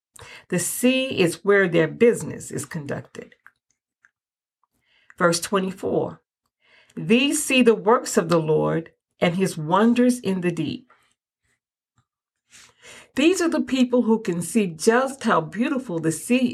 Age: 50-69